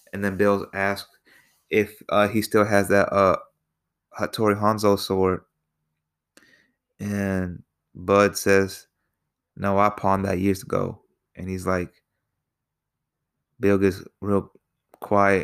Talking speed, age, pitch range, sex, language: 115 wpm, 20-39, 95-105 Hz, male, English